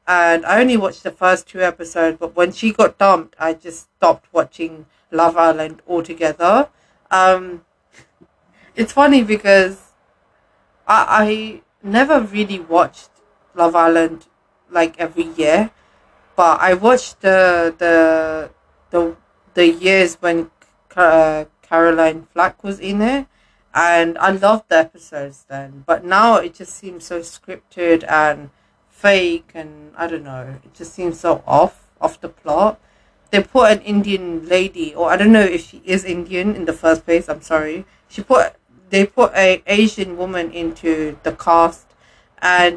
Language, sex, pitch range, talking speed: English, female, 165-200 Hz, 150 wpm